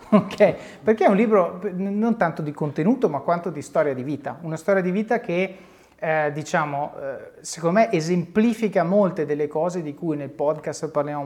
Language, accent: Italian, native